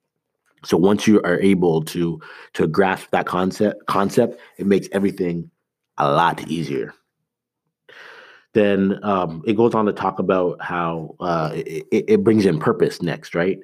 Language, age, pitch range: English, 30-49, 85-100 Hz